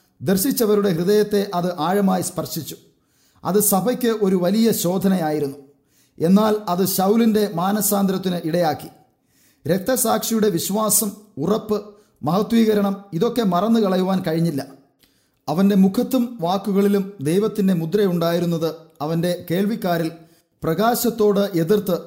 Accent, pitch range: Indian, 170-210 Hz